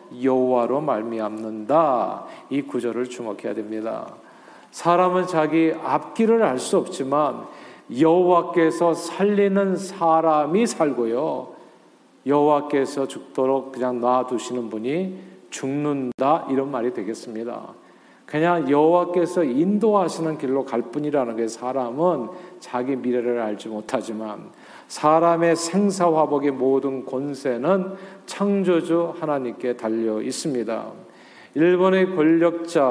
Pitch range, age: 135-180 Hz, 40-59